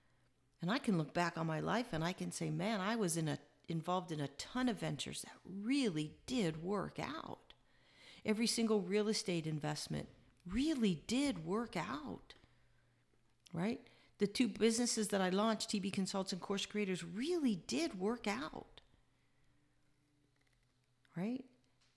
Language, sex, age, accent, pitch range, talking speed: English, female, 50-69, American, 145-210 Hz, 150 wpm